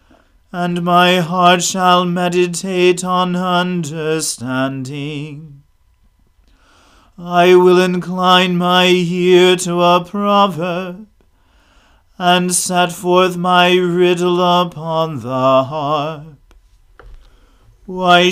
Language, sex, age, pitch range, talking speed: English, male, 40-59, 160-180 Hz, 80 wpm